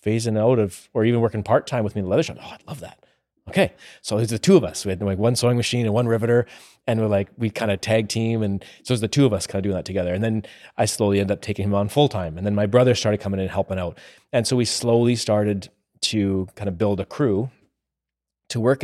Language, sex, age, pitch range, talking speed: English, male, 30-49, 100-120 Hz, 285 wpm